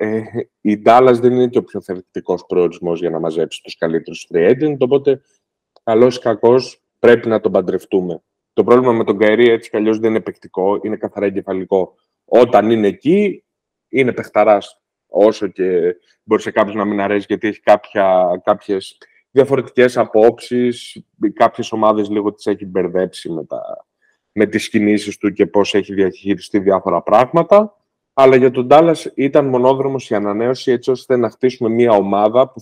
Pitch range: 105-125 Hz